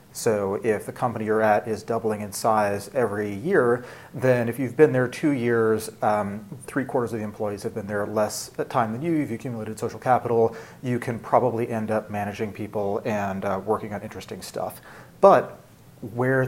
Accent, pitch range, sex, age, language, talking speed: American, 105-120 Hz, male, 30-49, English, 180 wpm